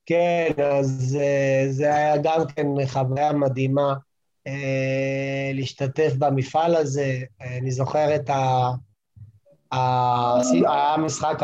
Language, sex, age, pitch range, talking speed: Hebrew, male, 20-39, 130-150 Hz, 80 wpm